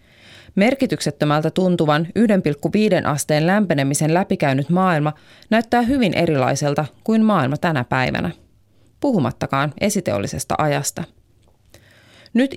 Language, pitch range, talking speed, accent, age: Finnish, 145-195 Hz, 85 wpm, native, 30-49